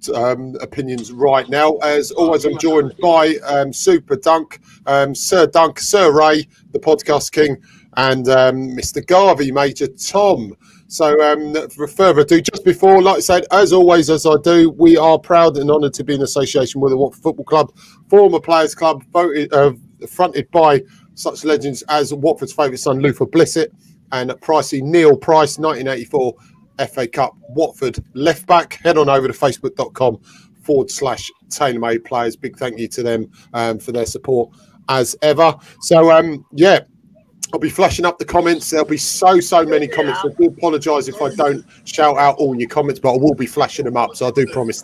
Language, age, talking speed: English, 30-49, 185 wpm